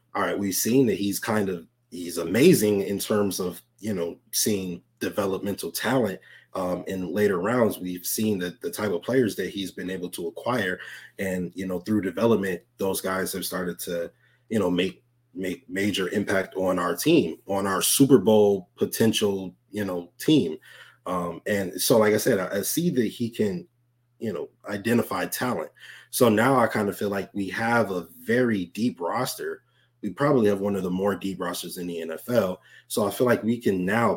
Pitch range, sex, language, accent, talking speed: 90-110 Hz, male, English, American, 195 wpm